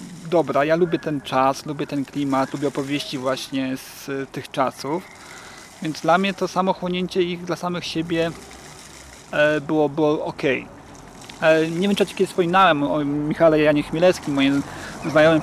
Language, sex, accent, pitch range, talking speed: Polish, male, native, 145-175 Hz, 150 wpm